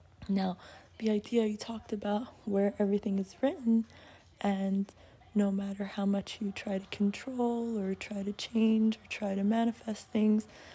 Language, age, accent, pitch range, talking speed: English, 20-39, American, 195-220 Hz, 155 wpm